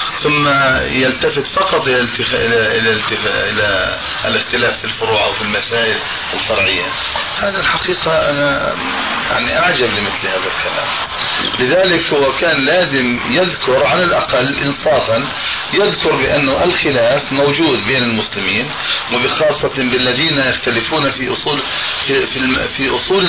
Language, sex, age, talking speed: Arabic, male, 40-59, 110 wpm